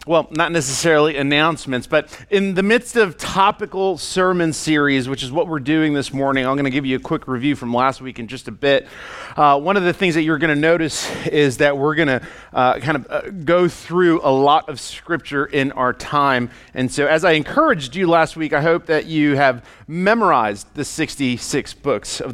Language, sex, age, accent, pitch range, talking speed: English, male, 40-59, American, 140-180 Hz, 200 wpm